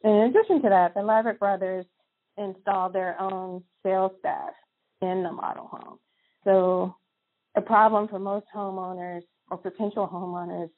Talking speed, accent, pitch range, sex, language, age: 145 wpm, American, 175-200 Hz, female, English, 30-49